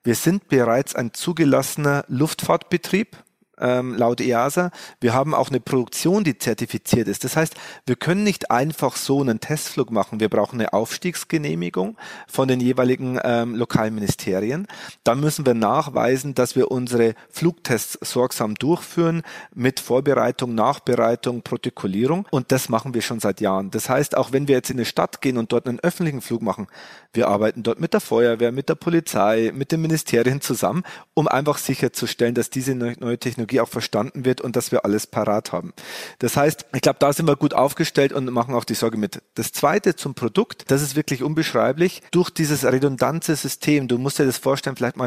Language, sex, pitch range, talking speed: German, male, 120-150 Hz, 180 wpm